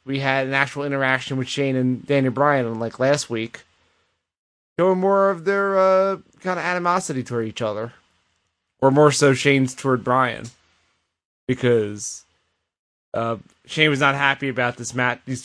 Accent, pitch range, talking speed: American, 105-145 Hz, 155 wpm